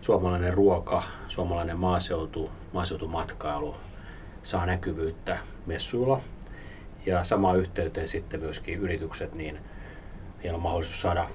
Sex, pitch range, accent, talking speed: male, 80-95 Hz, native, 90 wpm